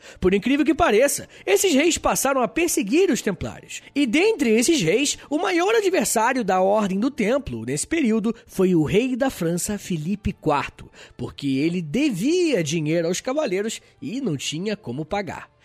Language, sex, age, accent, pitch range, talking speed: Portuguese, male, 20-39, Brazilian, 185-265 Hz, 160 wpm